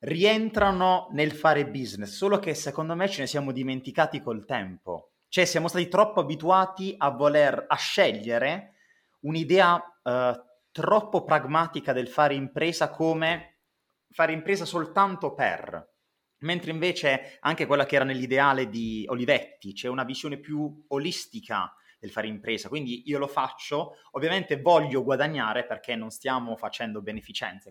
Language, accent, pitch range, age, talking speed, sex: Italian, native, 130-165 Hz, 30-49, 140 wpm, male